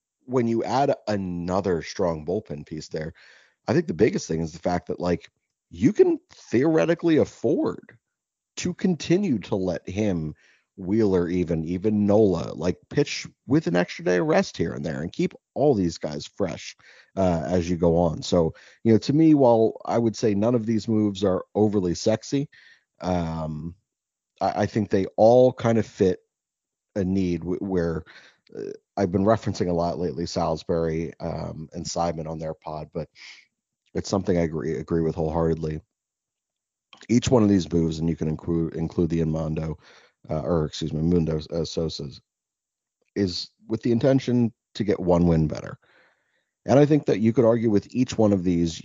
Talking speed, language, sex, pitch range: 175 wpm, English, male, 80-115 Hz